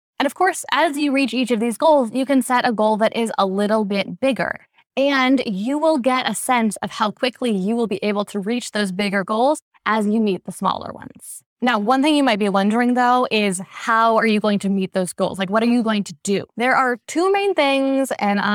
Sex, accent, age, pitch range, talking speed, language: female, American, 10-29, 200-255 Hz, 245 wpm, English